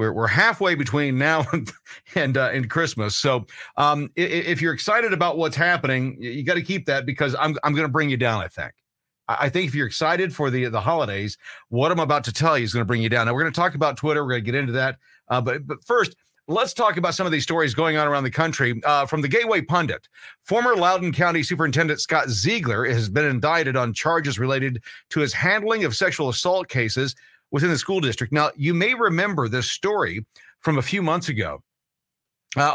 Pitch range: 125-165 Hz